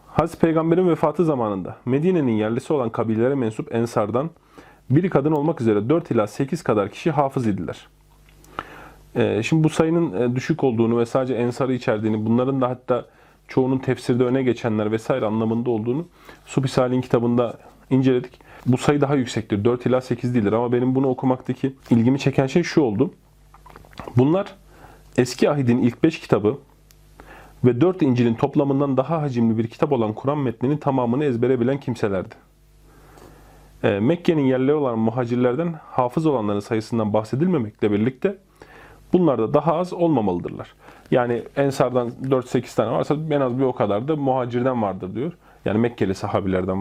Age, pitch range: 40-59, 120-150 Hz